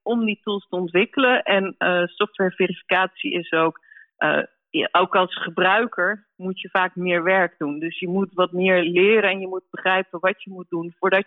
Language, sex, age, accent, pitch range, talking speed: Dutch, female, 40-59, Dutch, 170-205 Hz, 190 wpm